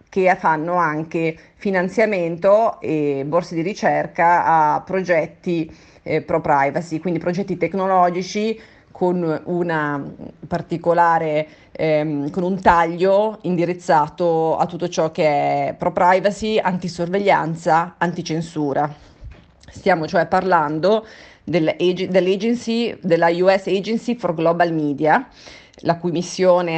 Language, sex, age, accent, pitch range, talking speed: Italian, female, 30-49, native, 155-190 Hz, 110 wpm